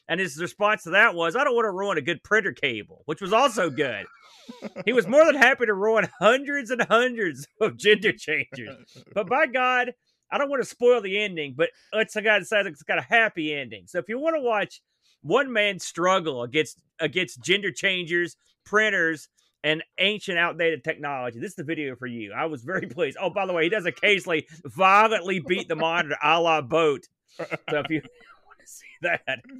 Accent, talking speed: American, 200 wpm